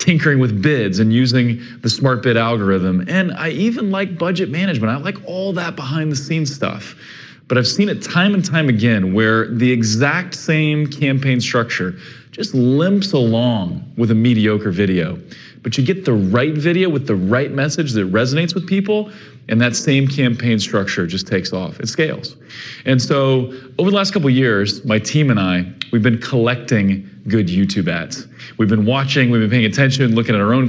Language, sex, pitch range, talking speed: English, male, 110-140 Hz, 190 wpm